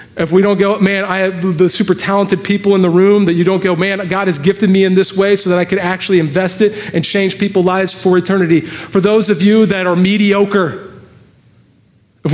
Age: 40-59